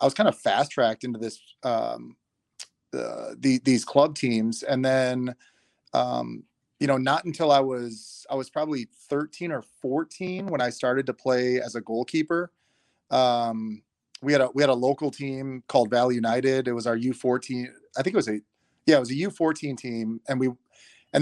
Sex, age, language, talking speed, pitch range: male, 30-49, English, 190 wpm, 115-135 Hz